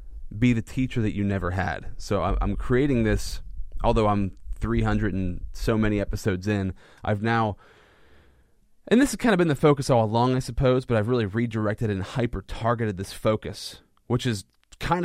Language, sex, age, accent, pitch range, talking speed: English, male, 30-49, American, 95-125 Hz, 175 wpm